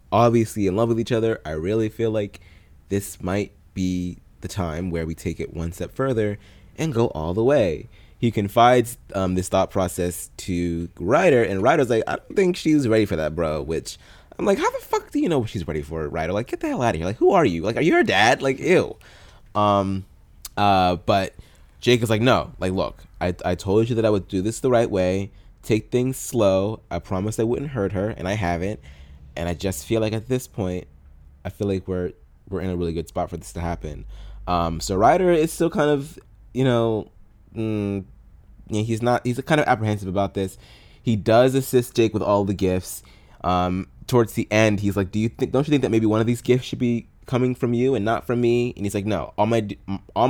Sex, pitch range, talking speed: male, 90-120 Hz, 230 wpm